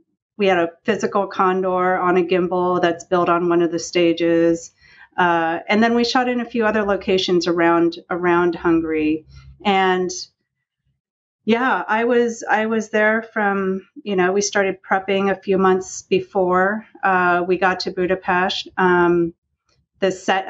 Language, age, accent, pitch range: English, 30-49, American, 170-195 Hz